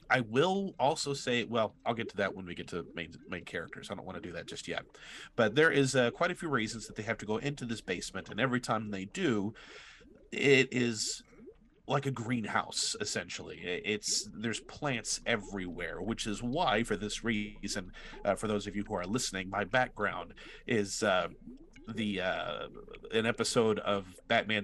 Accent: American